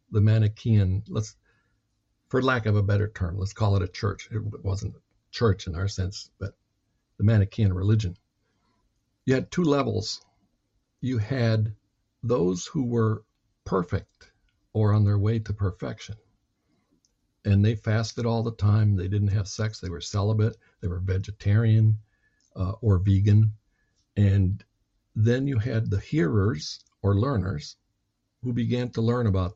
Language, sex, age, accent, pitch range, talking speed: English, male, 60-79, American, 100-115 Hz, 150 wpm